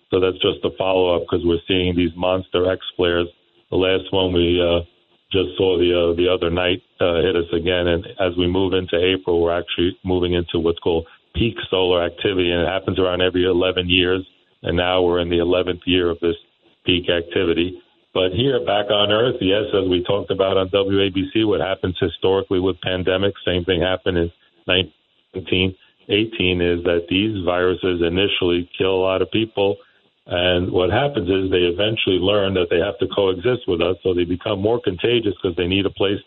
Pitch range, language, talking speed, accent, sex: 90-95 Hz, English, 195 wpm, American, male